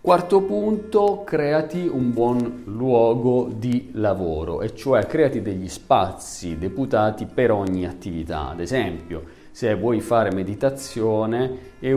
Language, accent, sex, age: Italian, native, male, 40-59